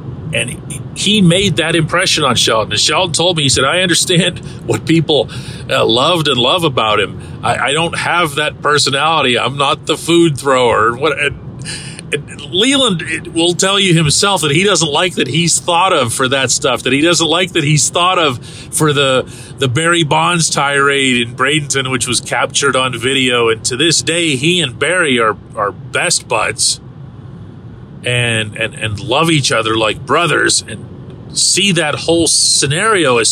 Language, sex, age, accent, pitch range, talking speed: English, male, 40-59, American, 125-160 Hz, 170 wpm